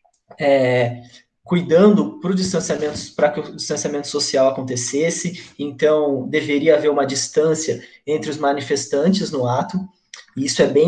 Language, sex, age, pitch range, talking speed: Portuguese, male, 20-39, 145-215 Hz, 115 wpm